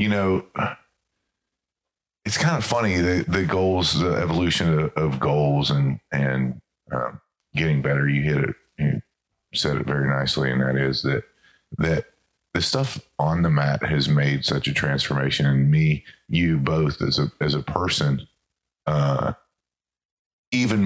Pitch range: 70-85 Hz